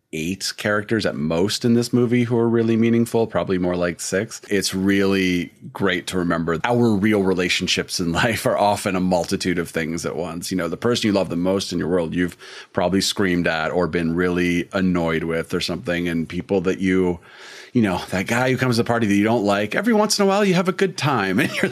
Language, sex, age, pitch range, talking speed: English, male, 30-49, 85-110 Hz, 230 wpm